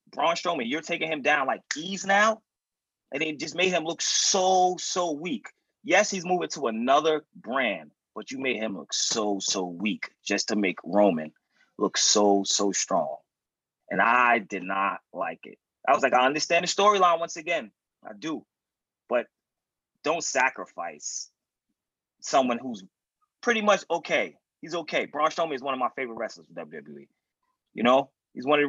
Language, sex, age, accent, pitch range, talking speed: English, male, 30-49, American, 120-185 Hz, 175 wpm